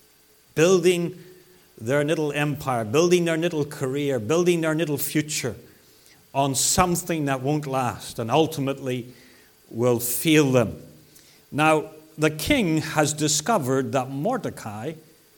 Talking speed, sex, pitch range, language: 115 wpm, male, 140-195 Hz, English